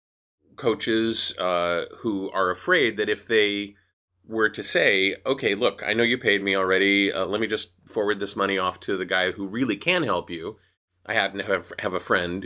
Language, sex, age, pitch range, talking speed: English, male, 30-49, 90-125 Hz, 200 wpm